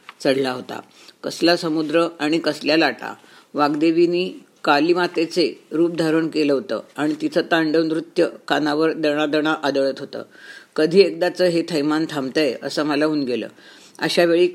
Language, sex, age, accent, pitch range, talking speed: Marathi, female, 50-69, native, 150-175 Hz, 135 wpm